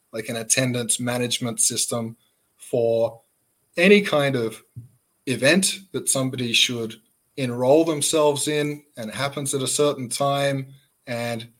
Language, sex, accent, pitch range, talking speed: English, male, Australian, 115-140 Hz, 120 wpm